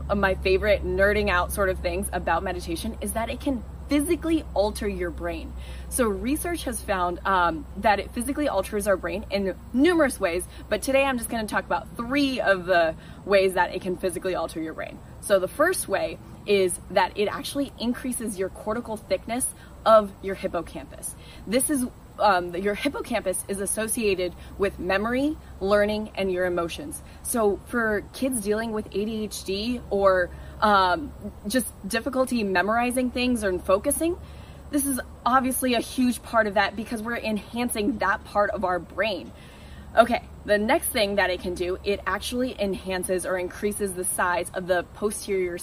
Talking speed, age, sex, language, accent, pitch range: 165 wpm, 20-39, female, English, American, 185-240 Hz